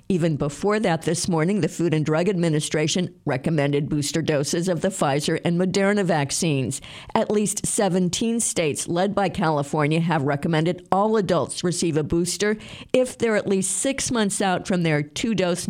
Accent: American